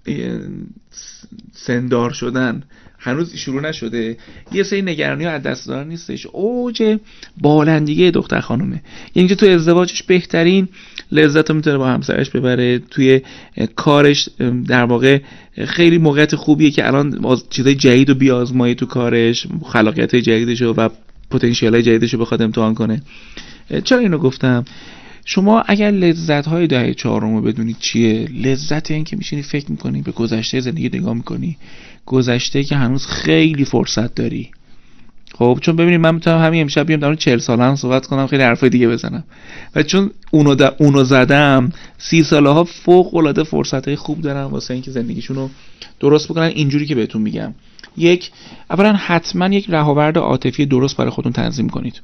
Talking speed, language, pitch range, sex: 150 wpm, Persian, 125-165 Hz, male